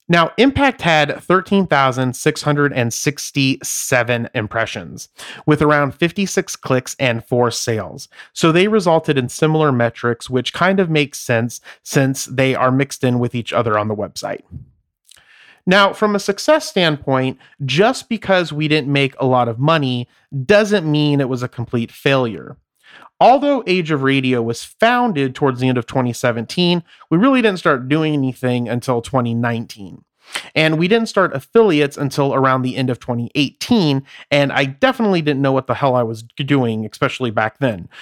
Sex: male